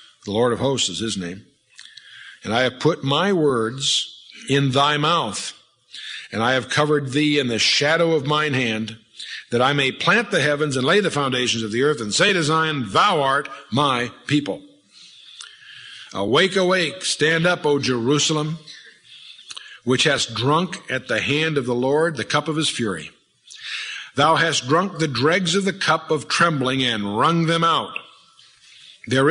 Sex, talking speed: male, 170 wpm